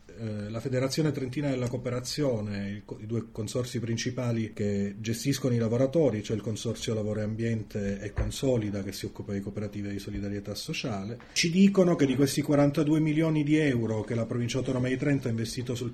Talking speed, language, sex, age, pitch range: 180 wpm, Italian, male, 30-49, 110-140 Hz